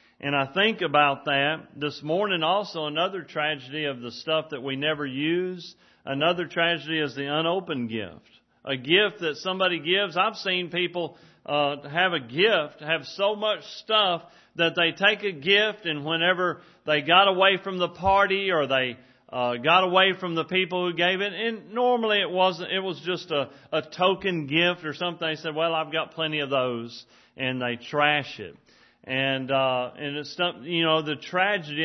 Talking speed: 180 wpm